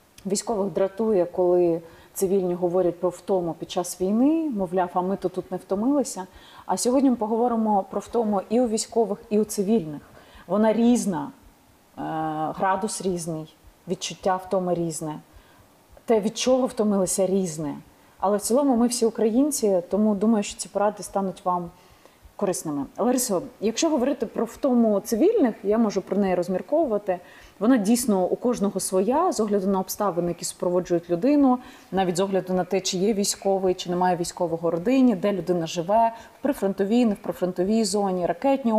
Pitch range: 180-230 Hz